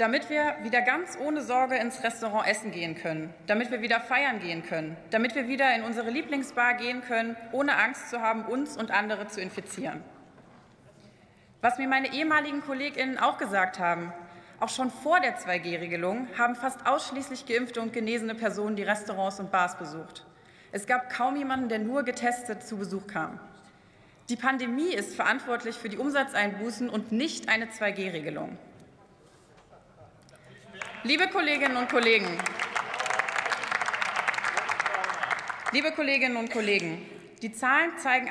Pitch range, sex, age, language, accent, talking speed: 200-255 Hz, female, 30-49, German, German, 145 wpm